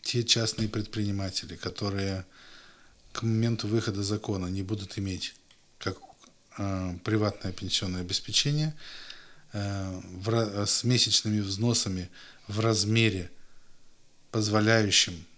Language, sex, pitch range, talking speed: Russian, male, 95-120 Hz, 90 wpm